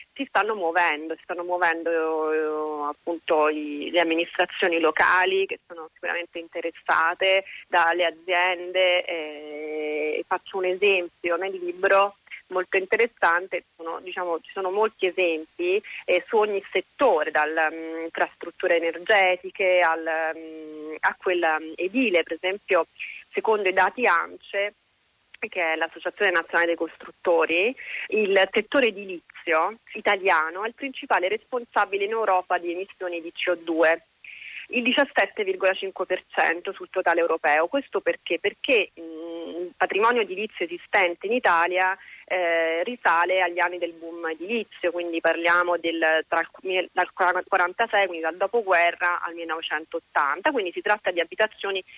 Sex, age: female, 30-49